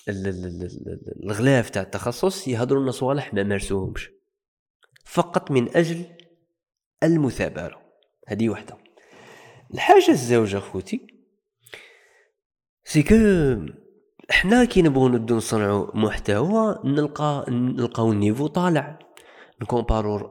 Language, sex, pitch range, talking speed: Arabic, male, 105-170 Hz, 90 wpm